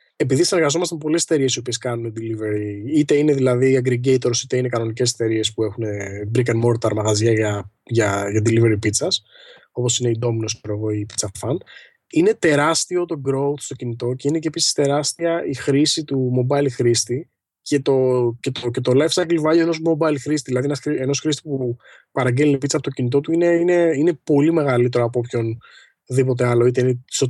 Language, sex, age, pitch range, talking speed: Greek, male, 20-39, 115-145 Hz, 175 wpm